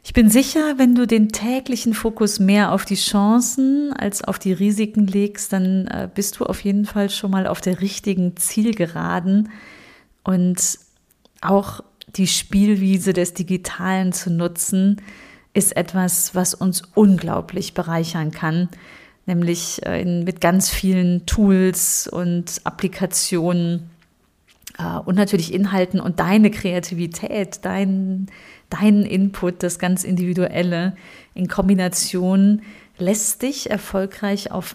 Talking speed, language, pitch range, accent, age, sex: 120 wpm, German, 180-215 Hz, German, 30-49, female